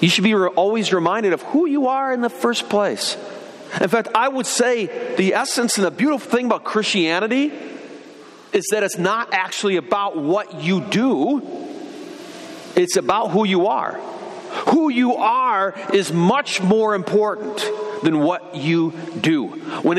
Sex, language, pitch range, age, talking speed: male, English, 175-265 Hz, 40-59, 155 wpm